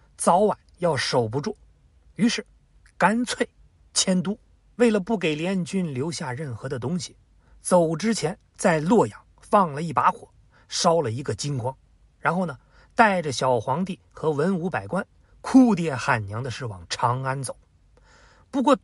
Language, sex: Chinese, male